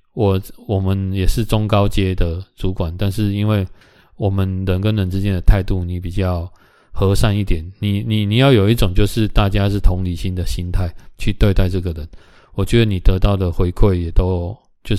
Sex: male